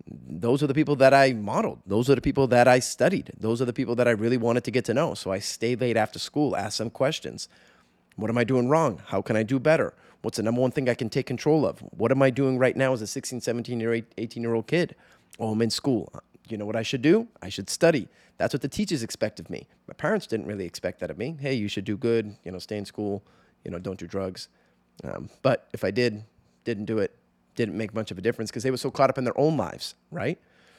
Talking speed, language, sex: 265 wpm, English, male